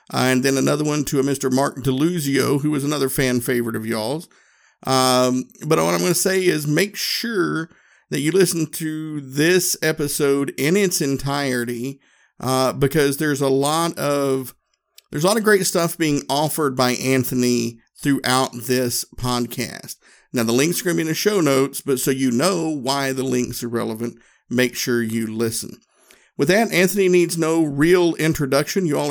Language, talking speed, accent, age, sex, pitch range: English, 175 wpm, American, 50-69, male, 125-155 Hz